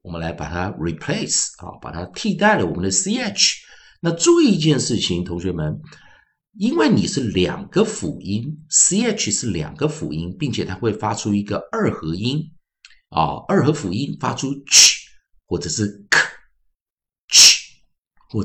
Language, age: Chinese, 50-69